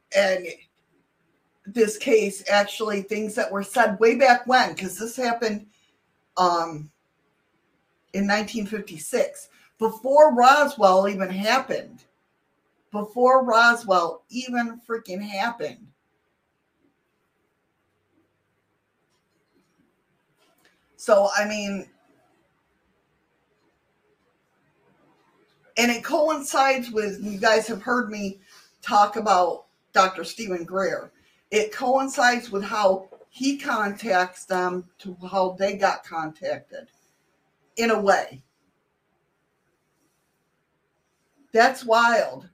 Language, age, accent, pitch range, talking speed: English, 50-69, American, 185-230 Hz, 85 wpm